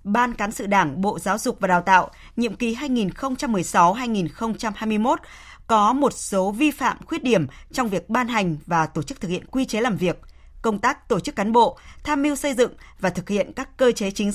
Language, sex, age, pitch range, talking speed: Vietnamese, female, 20-39, 190-240 Hz, 210 wpm